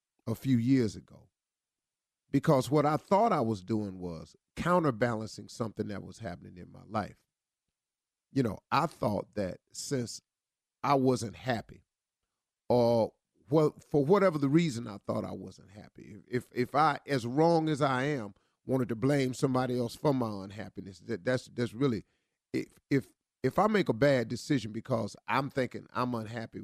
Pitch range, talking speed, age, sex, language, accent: 110-150 Hz, 170 wpm, 40-59, male, English, American